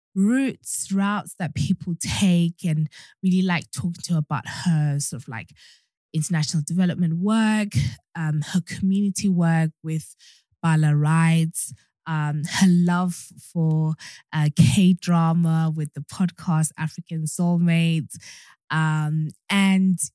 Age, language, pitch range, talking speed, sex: 20-39, English, 150-180 Hz, 110 wpm, female